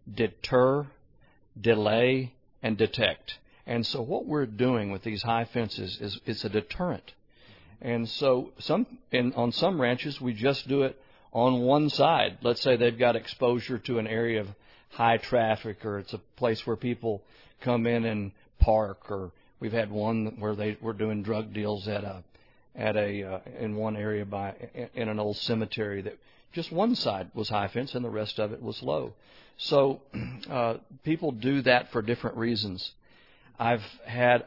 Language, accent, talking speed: English, American, 170 wpm